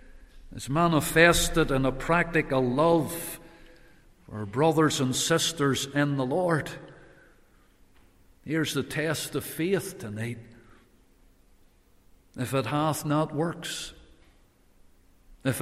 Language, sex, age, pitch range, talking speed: English, male, 60-79, 120-185 Hz, 95 wpm